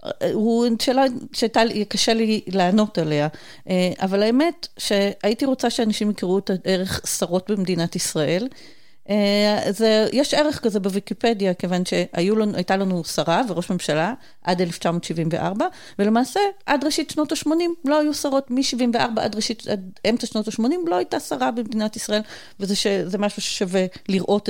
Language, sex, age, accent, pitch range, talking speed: Hebrew, female, 40-59, native, 185-245 Hz, 140 wpm